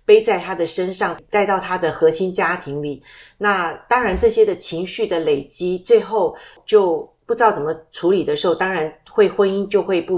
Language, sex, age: Chinese, female, 50-69